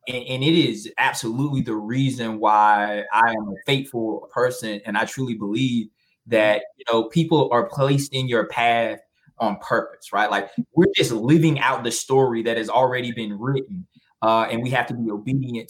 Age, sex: 20-39, male